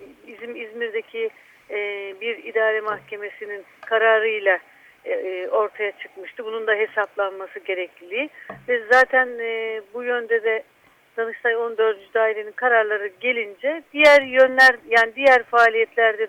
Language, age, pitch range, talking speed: Turkish, 60-79, 225-310 Hz, 95 wpm